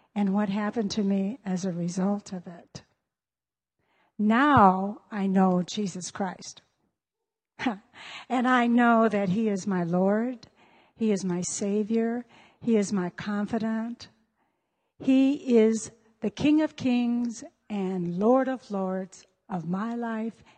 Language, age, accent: English, 60-79, American